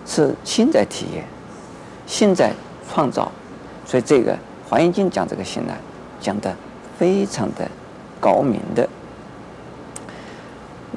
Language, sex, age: Chinese, male, 50-69